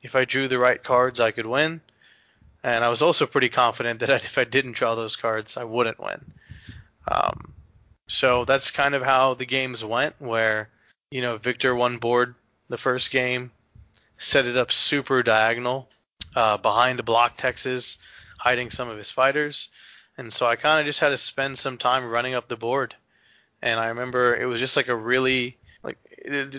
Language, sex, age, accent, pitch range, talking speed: English, male, 20-39, American, 115-130 Hz, 185 wpm